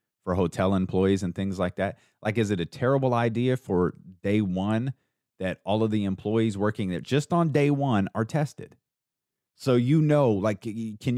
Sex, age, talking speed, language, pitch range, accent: male, 30-49, 185 wpm, English, 100-135 Hz, American